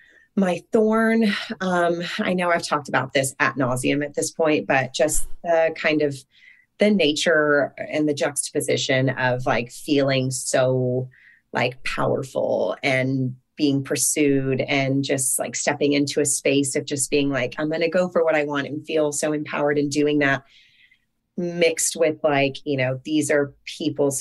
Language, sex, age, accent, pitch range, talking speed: English, female, 30-49, American, 130-150 Hz, 165 wpm